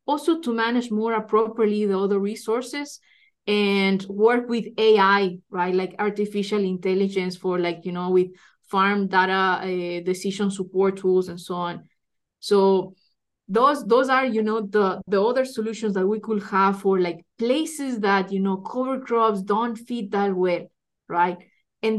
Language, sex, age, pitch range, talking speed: English, female, 20-39, 195-235 Hz, 160 wpm